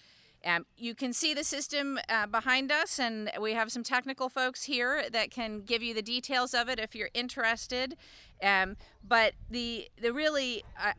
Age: 40-59